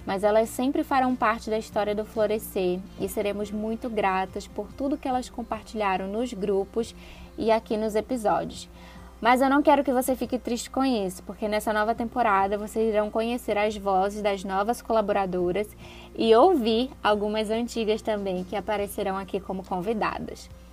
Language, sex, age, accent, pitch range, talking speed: Portuguese, female, 20-39, Brazilian, 205-245 Hz, 160 wpm